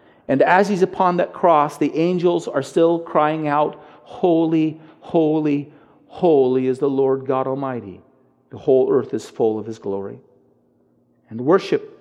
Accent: American